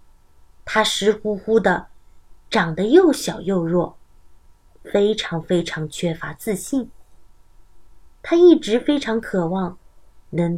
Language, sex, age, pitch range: Chinese, female, 30-49, 175-275 Hz